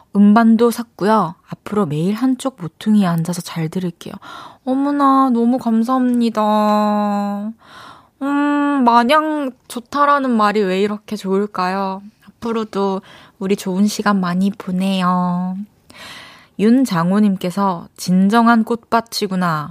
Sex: female